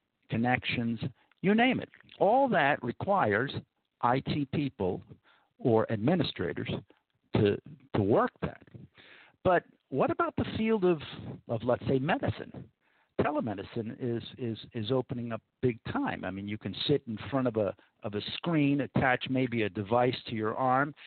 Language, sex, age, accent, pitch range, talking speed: English, male, 50-69, American, 115-150 Hz, 150 wpm